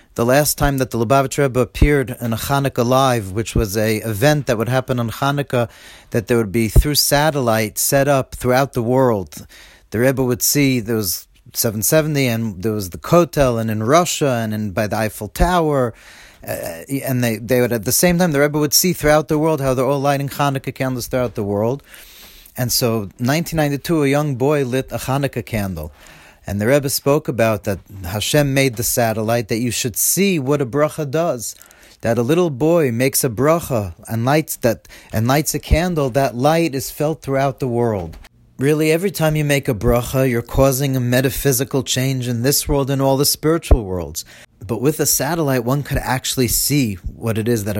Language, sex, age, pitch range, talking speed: English, male, 40-59, 115-140 Hz, 200 wpm